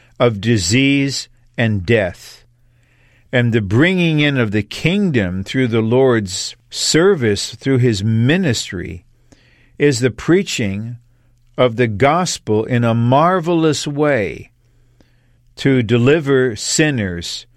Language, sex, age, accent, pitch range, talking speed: English, male, 50-69, American, 110-130 Hz, 105 wpm